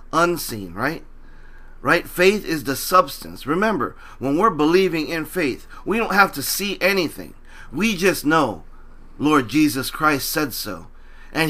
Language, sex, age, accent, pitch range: Chinese, male, 40-59, American, 125-170 Hz